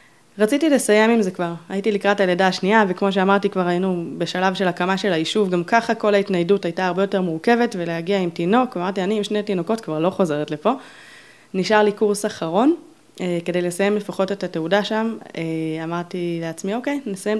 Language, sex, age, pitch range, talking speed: Hebrew, female, 20-39, 180-220 Hz, 180 wpm